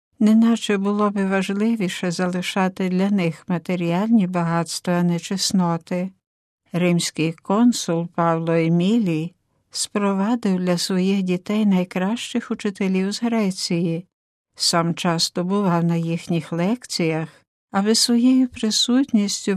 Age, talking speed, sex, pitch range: 60-79, 100 wpm, female, 175-210 Hz